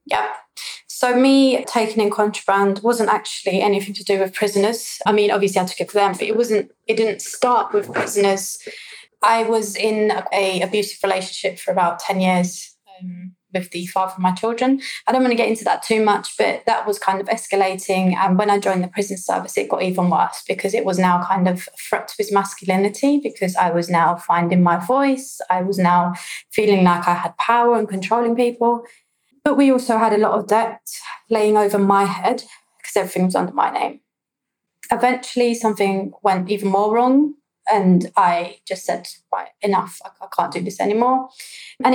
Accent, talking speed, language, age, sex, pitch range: British, 195 wpm, English, 20-39, female, 185-225 Hz